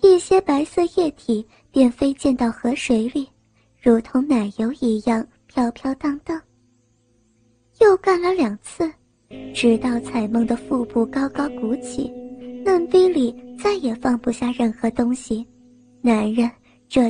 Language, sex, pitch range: Chinese, male, 235-310 Hz